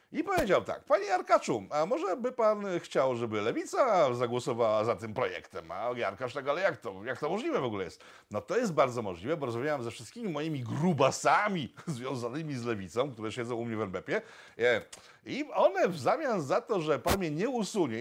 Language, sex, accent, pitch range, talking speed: Polish, male, native, 125-185 Hz, 195 wpm